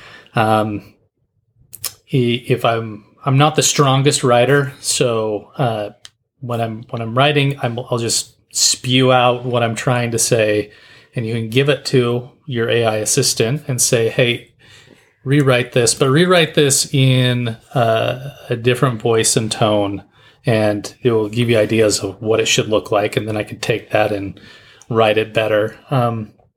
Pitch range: 110-130 Hz